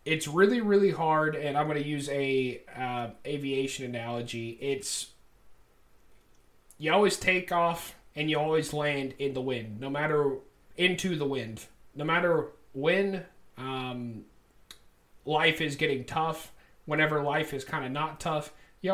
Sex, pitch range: male, 135-165 Hz